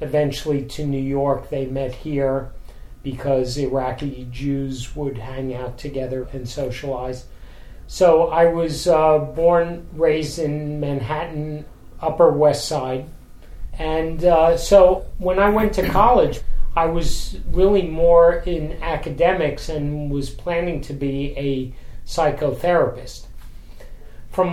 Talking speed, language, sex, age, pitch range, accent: 120 wpm, English, male, 40-59, 135-160 Hz, American